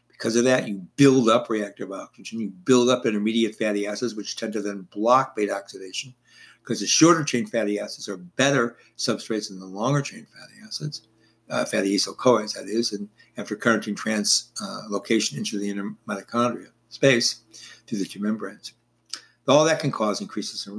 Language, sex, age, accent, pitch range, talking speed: English, male, 60-79, American, 105-135 Hz, 175 wpm